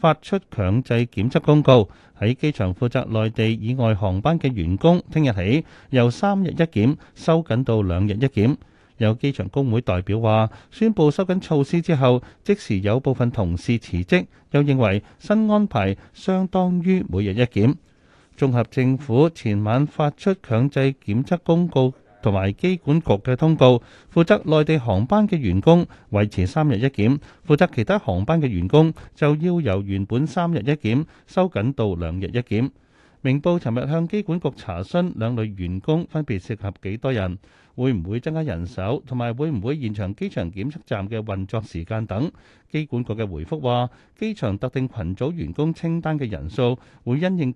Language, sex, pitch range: Chinese, male, 105-155 Hz